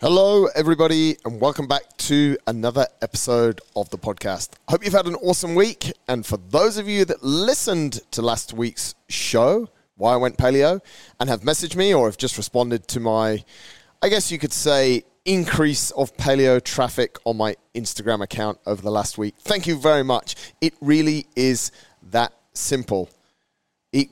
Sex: male